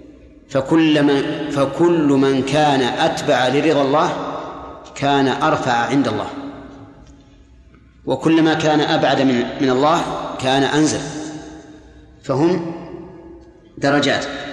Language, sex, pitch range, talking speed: Arabic, male, 135-155 Hz, 85 wpm